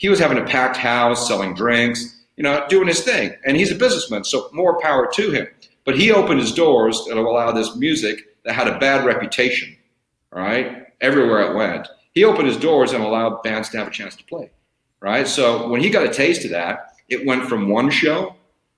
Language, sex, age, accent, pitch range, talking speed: English, male, 40-59, American, 110-140 Hz, 215 wpm